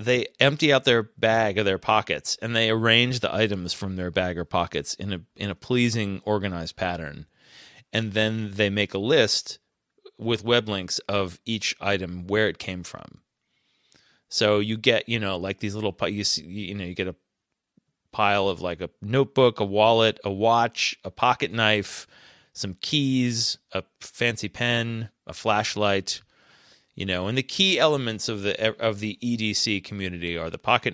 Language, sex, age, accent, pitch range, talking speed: English, male, 30-49, American, 95-120 Hz, 175 wpm